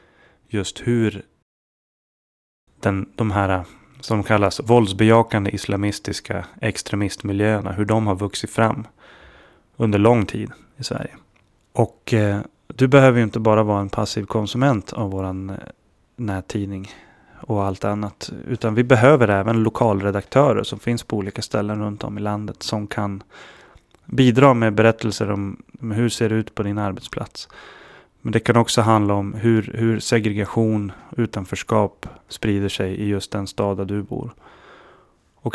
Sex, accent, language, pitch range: male, native, Swedish, 100-115 Hz